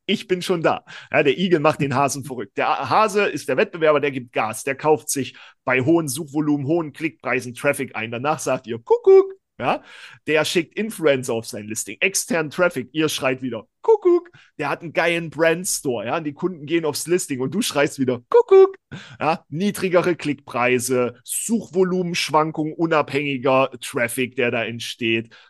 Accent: German